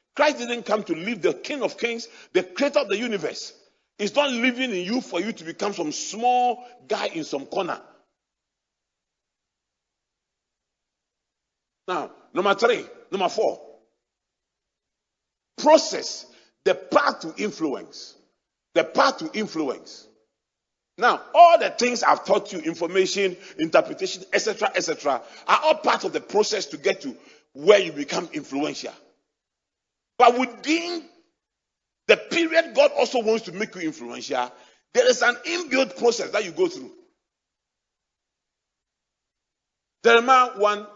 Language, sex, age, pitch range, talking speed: English, male, 40-59, 205-330 Hz, 130 wpm